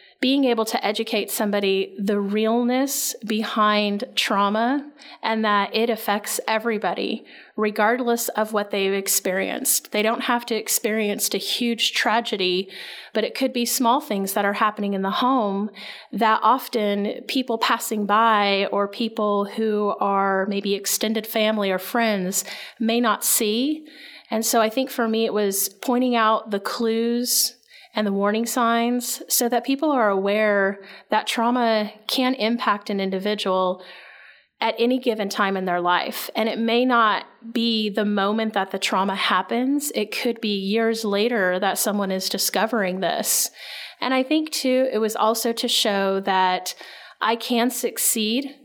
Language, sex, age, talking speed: English, female, 30-49, 155 wpm